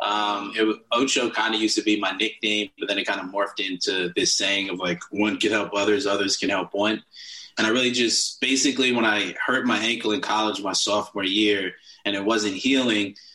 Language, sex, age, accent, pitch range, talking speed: English, male, 20-39, American, 100-115 Hz, 215 wpm